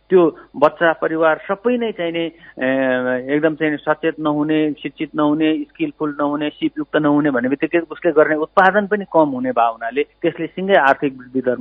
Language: English